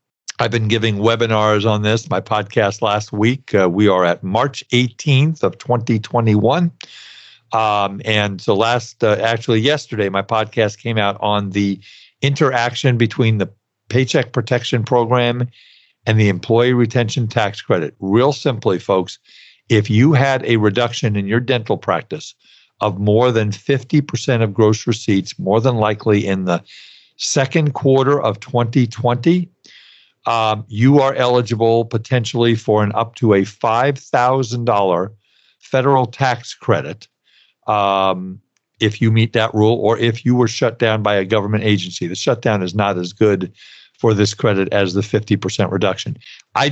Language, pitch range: English, 105-125 Hz